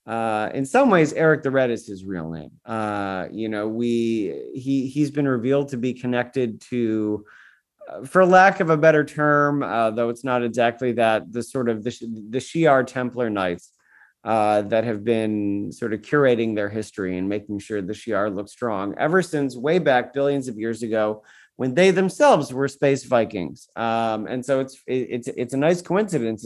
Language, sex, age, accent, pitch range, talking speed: English, male, 30-49, American, 105-135 Hz, 190 wpm